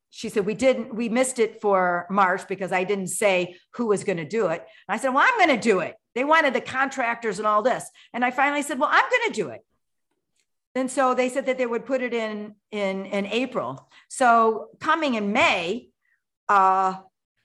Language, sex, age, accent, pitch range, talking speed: English, female, 50-69, American, 215-290 Hz, 215 wpm